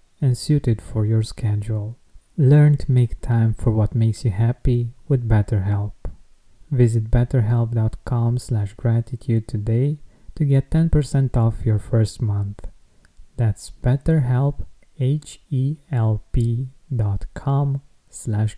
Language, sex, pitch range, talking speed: English, male, 115-140 Hz, 100 wpm